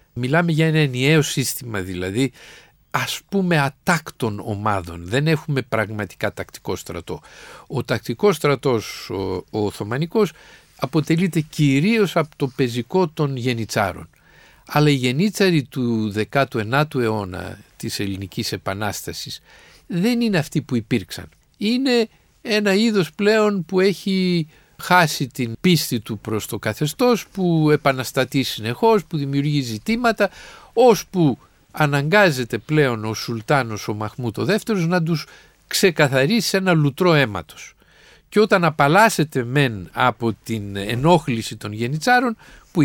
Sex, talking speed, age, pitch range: male, 120 wpm, 50-69, 115-180 Hz